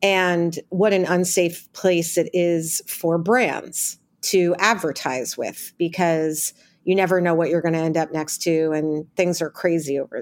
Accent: American